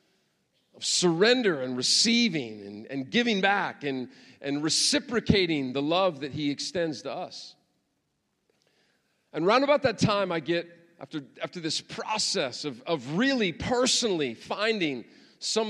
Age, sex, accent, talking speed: 40-59, male, American, 135 wpm